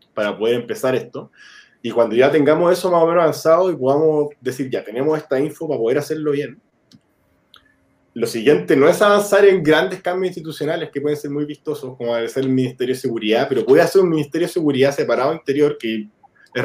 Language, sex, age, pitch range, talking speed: Spanish, male, 20-39, 125-170 Hz, 200 wpm